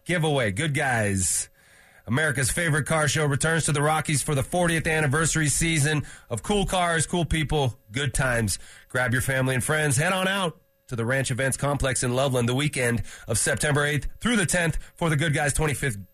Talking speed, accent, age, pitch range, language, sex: 190 wpm, American, 30-49, 120-155 Hz, English, male